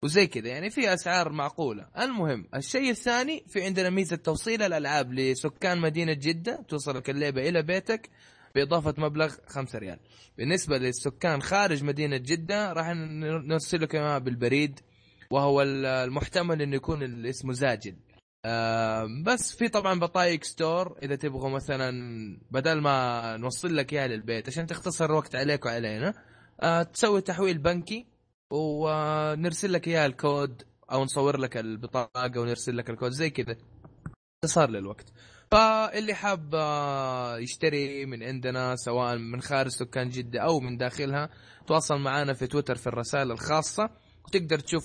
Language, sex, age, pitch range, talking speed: Arabic, male, 20-39, 125-165 Hz, 130 wpm